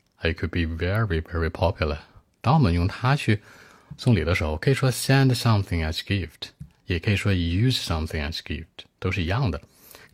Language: Chinese